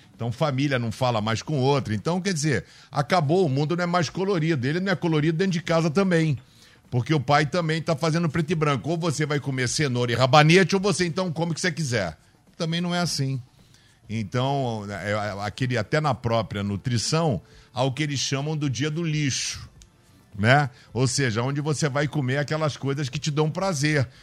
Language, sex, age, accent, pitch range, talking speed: Portuguese, male, 50-69, Brazilian, 125-165 Hz, 200 wpm